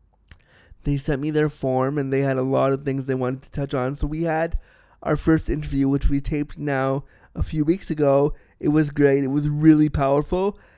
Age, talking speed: 20-39, 210 wpm